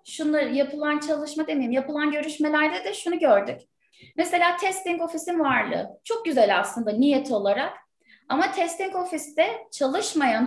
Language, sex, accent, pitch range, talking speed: Turkish, female, native, 275-335 Hz, 125 wpm